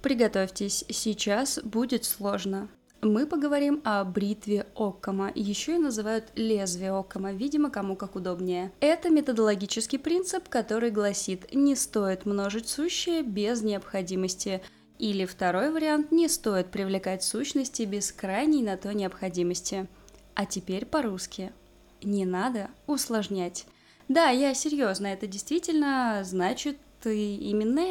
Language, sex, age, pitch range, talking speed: Russian, female, 20-39, 200-275 Hz, 115 wpm